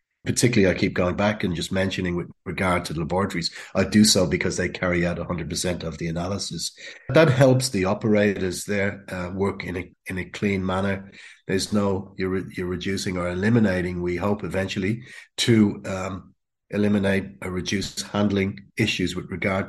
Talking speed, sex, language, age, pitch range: 170 wpm, male, English, 30-49, 95-105 Hz